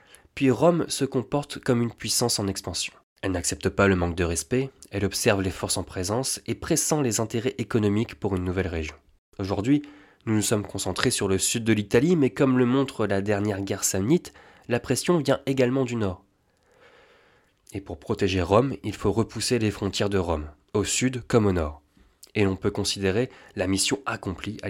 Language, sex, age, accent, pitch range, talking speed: French, male, 20-39, French, 95-125 Hz, 190 wpm